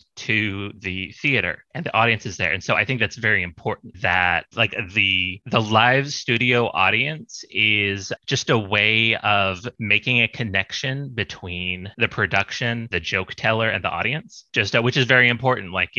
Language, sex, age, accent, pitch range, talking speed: English, male, 30-49, American, 95-120 Hz, 175 wpm